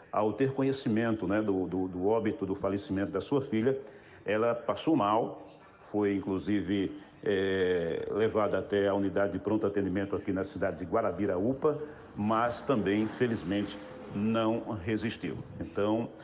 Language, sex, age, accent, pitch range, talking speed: Portuguese, male, 60-79, Brazilian, 100-115 Hz, 140 wpm